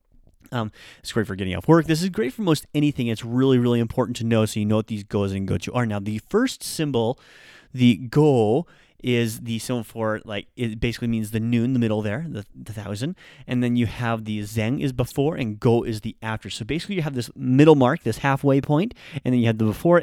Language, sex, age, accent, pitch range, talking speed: English, male, 30-49, American, 110-135 Hz, 235 wpm